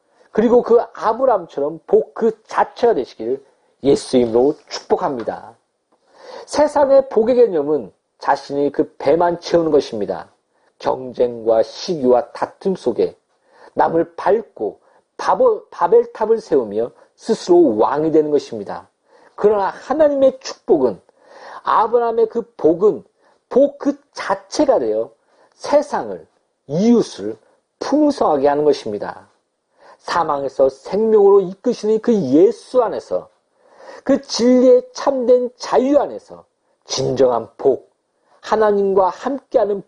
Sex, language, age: male, Korean, 40-59